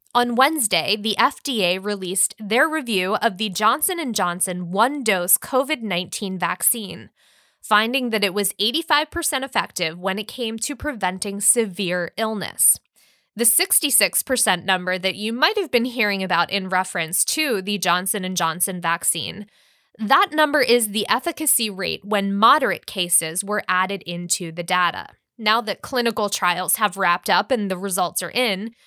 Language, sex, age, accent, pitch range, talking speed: English, female, 20-39, American, 185-245 Hz, 145 wpm